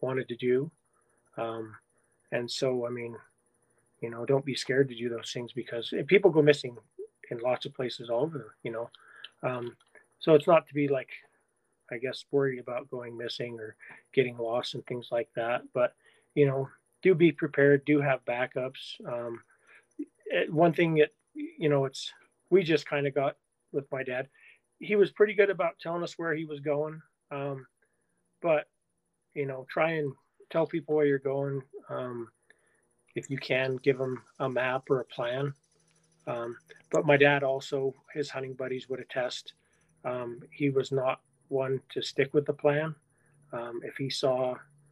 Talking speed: 175 wpm